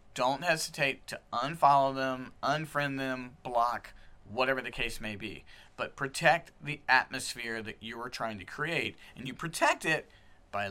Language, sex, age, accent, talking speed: English, male, 40-59, American, 155 wpm